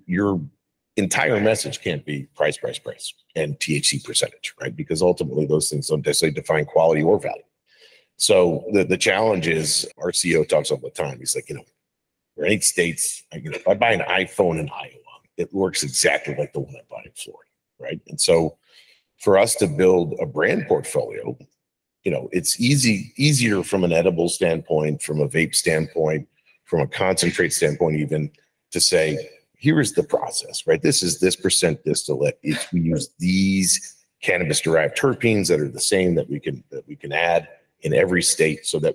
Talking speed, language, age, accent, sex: 190 wpm, English, 40-59, American, male